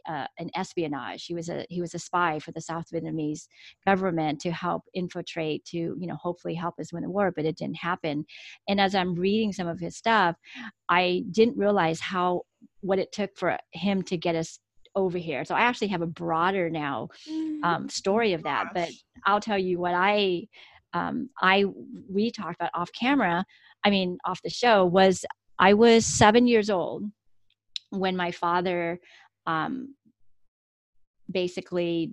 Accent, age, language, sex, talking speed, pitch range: American, 40-59, English, female, 175 wpm, 165-190 Hz